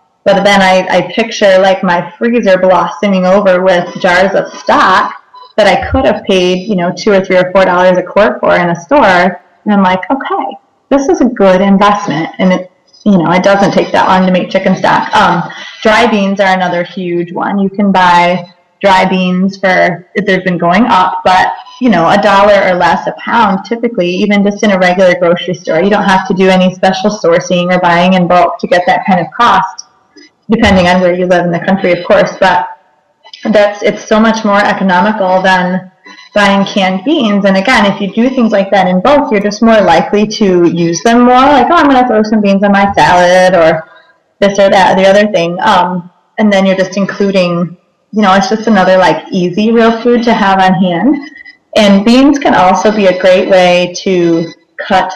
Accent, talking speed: American, 210 wpm